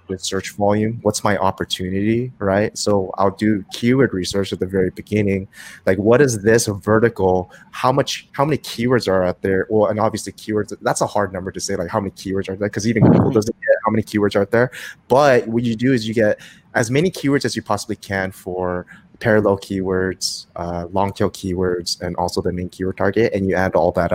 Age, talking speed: 20-39, 215 wpm